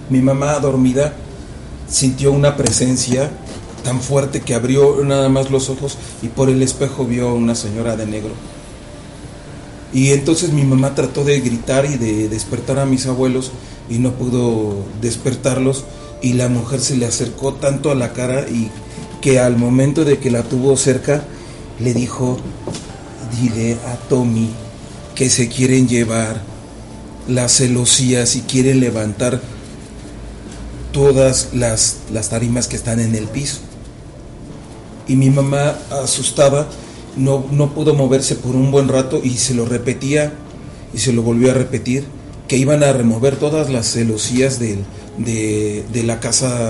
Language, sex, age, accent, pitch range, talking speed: Spanish, male, 40-59, Mexican, 115-135 Hz, 150 wpm